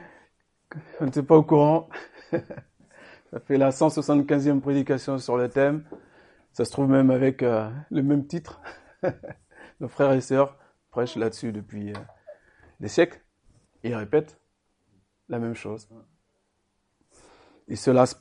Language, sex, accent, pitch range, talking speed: French, male, French, 105-145 Hz, 125 wpm